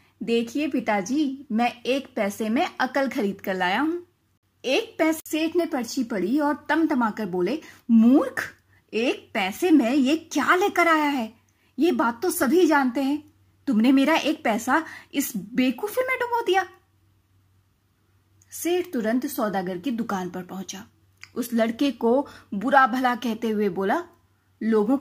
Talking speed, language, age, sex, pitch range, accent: 145 wpm, Hindi, 30-49, female, 200-305 Hz, native